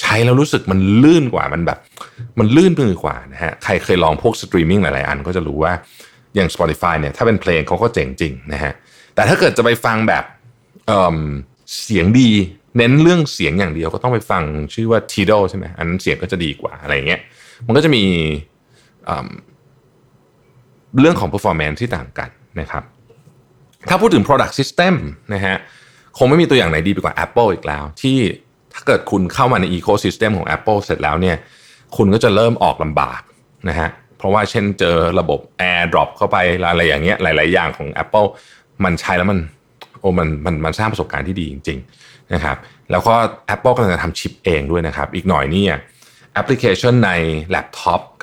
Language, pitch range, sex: Thai, 80-115 Hz, male